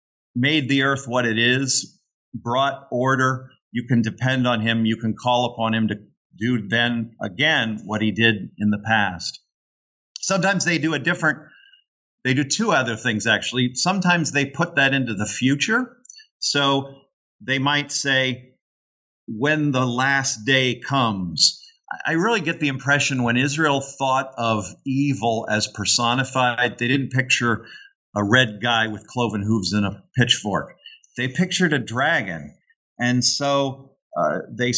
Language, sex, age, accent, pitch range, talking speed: English, male, 50-69, American, 115-145 Hz, 150 wpm